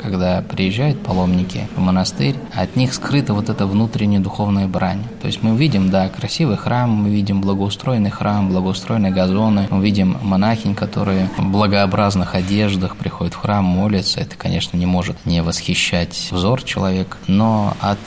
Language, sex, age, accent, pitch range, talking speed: Russian, male, 20-39, native, 95-115 Hz, 155 wpm